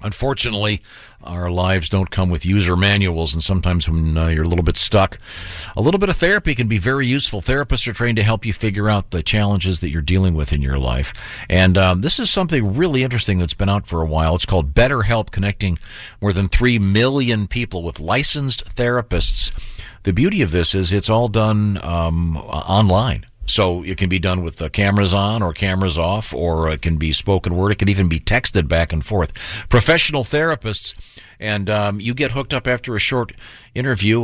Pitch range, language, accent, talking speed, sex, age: 90-115 Hz, English, American, 205 wpm, male, 50-69